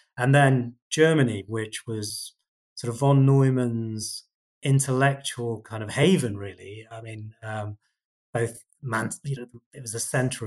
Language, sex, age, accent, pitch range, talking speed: English, male, 30-49, British, 105-130 Hz, 145 wpm